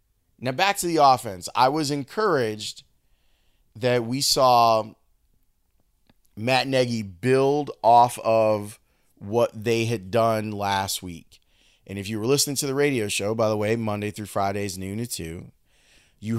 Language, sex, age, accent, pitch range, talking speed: English, male, 30-49, American, 100-130 Hz, 150 wpm